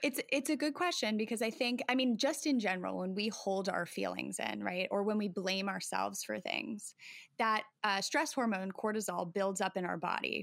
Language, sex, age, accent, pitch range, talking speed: English, female, 20-39, American, 185-225 Hz, 215 wpm